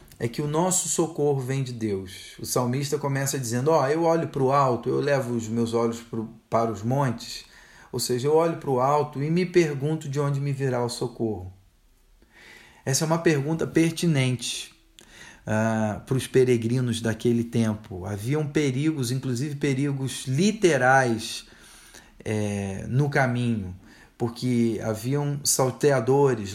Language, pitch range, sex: Portuguese, 115-155 Hz, male